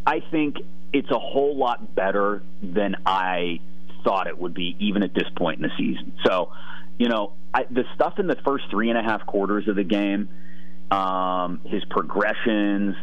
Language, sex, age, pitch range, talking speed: English, male, 40-59, 85-115 Hz, 180 wpm